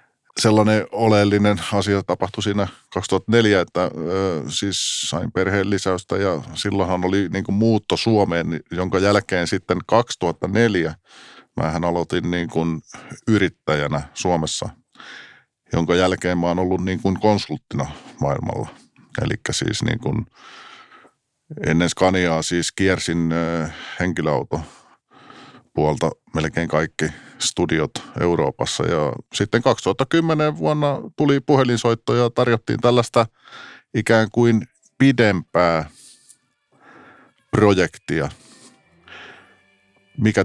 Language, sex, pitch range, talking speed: Finnish, male, 95-115 Hz, 95 wpm